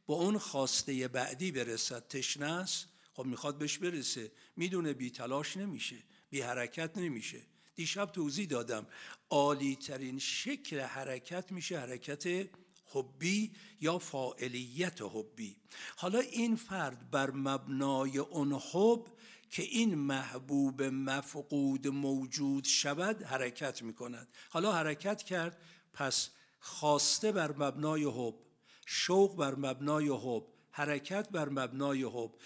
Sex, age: male, 60-79